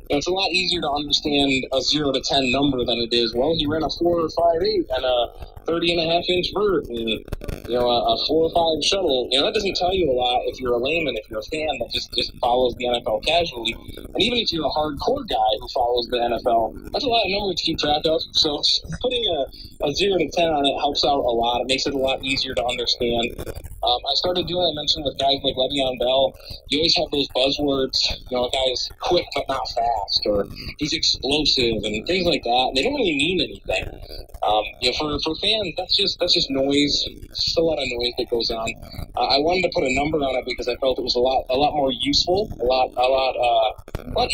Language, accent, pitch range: English, American, 120-165 Hz